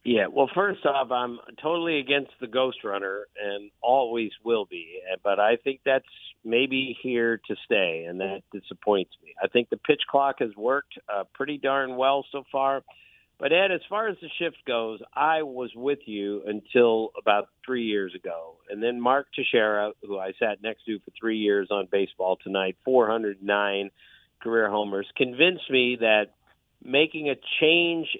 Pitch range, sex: 105-160 Hz, male